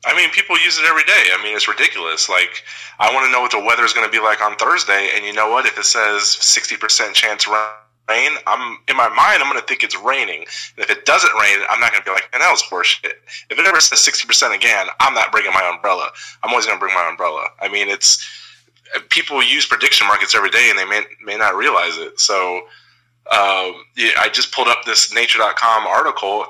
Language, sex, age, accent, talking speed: English, male, 20-39, American, 240 wpm